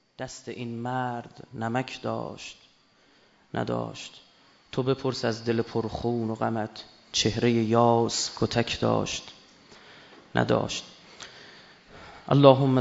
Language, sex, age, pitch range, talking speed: Persian, male, 30-49, 110-125 Hz, 90 wpm